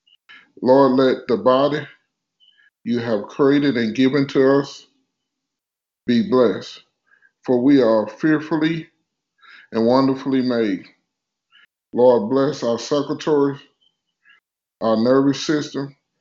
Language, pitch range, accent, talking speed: English, 120-140 Hz, American, 100 wpm